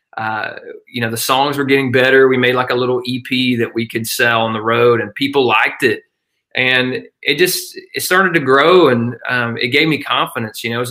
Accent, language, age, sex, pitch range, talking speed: American, English, 20-39, male, 120-140 Hz, 225 wpm